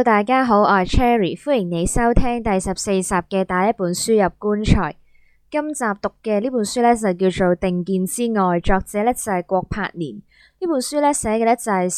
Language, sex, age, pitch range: Chinese, female, 20-39, 180-235 Hz